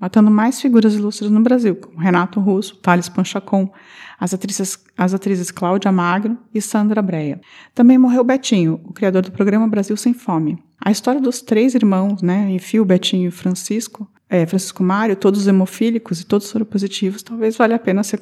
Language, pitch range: Portuguese, 190-240 Hz